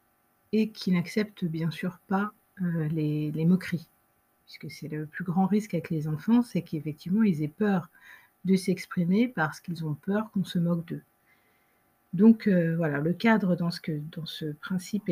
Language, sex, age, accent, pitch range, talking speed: French, female, 50-69, French, 175-220 Hz, 170 wpm